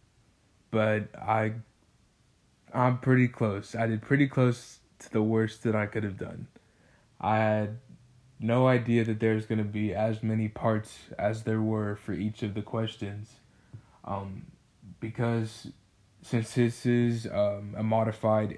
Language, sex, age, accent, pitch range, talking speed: English, male, 20-39, American, 105-115 Hz, 145 wpm